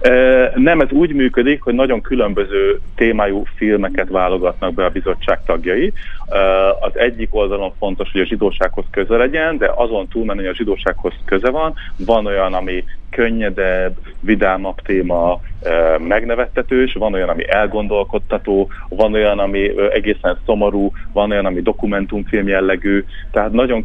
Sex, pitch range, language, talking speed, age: male, 90-110 Hz, Hungarian, 135 wpm, 30-49